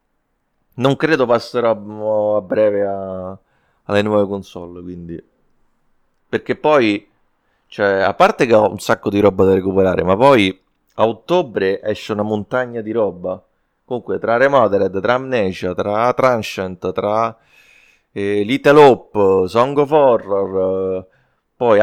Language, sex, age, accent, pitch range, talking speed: Italian, male, 30-49, native, 95-125 Hz, 125 wpm